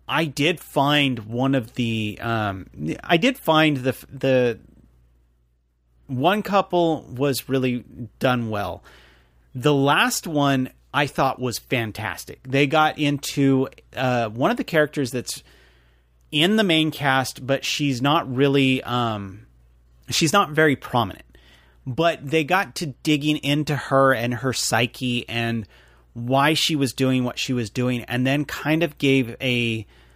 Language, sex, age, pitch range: English, male, 30-49, 110-145 Hz